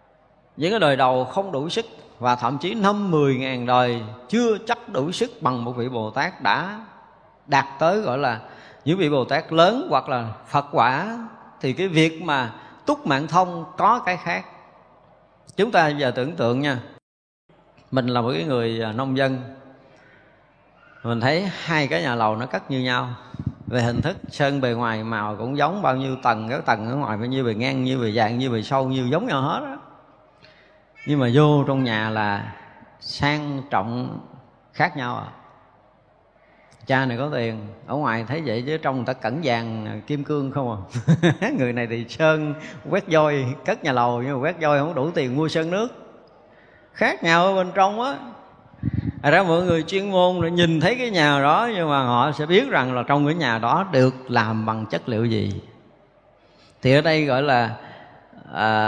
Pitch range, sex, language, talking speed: 120-160 Hz, male, Vietnamese, 195 wpm